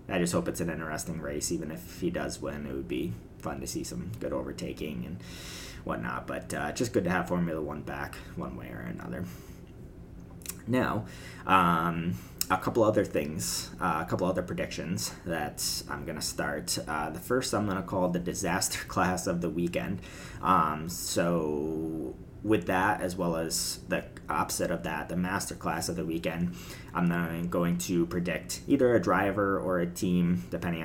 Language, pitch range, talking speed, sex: English, 85-95 Hz, 180 wpm, male